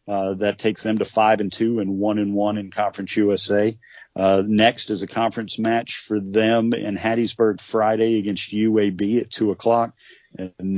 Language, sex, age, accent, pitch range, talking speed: English, male, 40-59, American, 100-115 Hz, 180 wpm